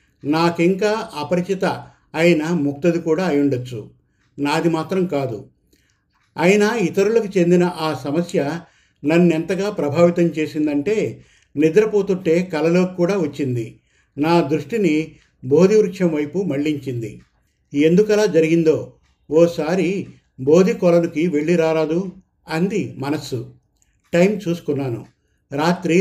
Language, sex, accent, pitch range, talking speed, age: Telugu, male, native, 145-180 Hz, 90 wpm, 50-69